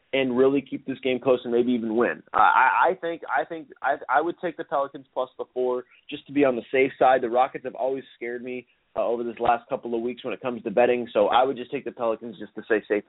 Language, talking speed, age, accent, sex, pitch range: English, 275 wpm, 30-49, American, male, 110-150 Hz